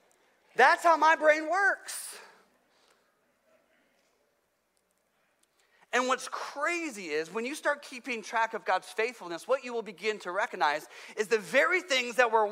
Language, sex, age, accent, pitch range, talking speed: English, male, 40-59, American, 225-305 Hz, 140 wpm